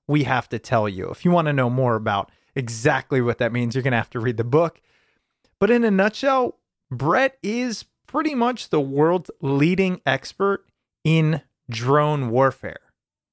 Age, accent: 30-49, American